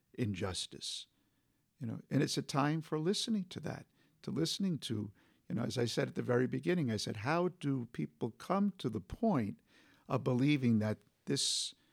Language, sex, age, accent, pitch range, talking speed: English, male, 50-69, American, 110-150 Hz, 180 wpm